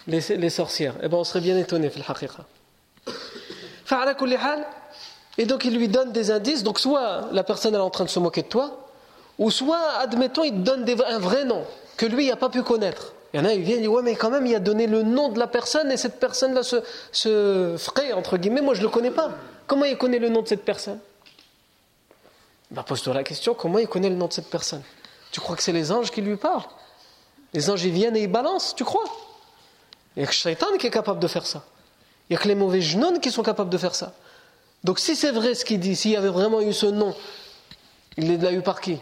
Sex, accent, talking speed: male, French, 250 wpm